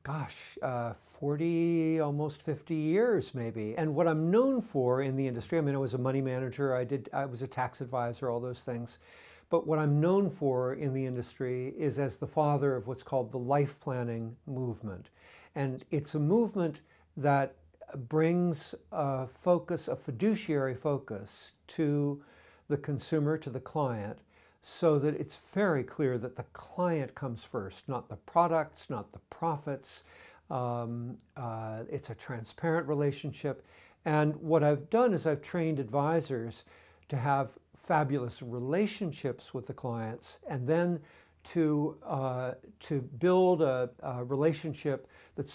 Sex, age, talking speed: male, 60-79, 150 wpm